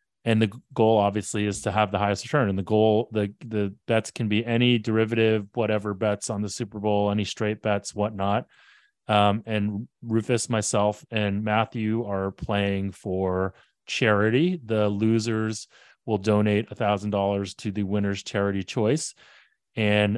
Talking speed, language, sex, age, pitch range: 150 wpm, English, male, 30-49, 100-115 Hz